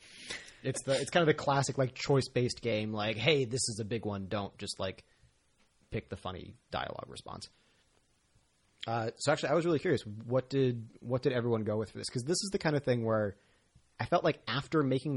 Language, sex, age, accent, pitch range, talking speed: English, male, 30-49, American, 105-135 Hz, 215 wpm